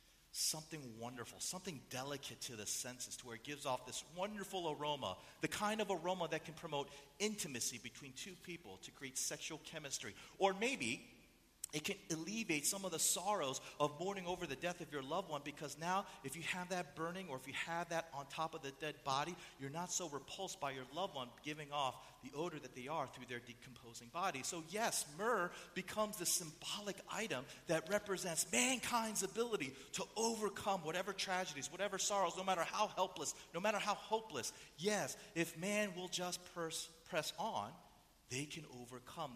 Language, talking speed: English, 185 wpm